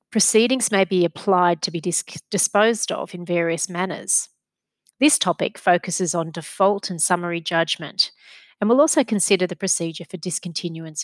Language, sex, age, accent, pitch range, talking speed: English, female, 30-49, Australian, 170-205 Hz, 145 wpm